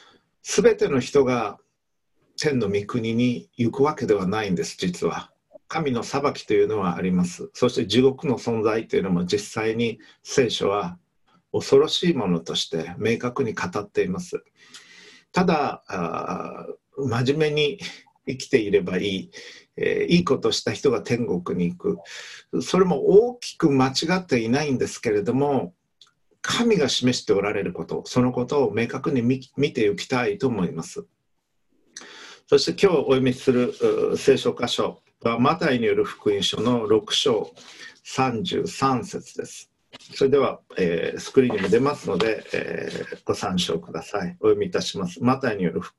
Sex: male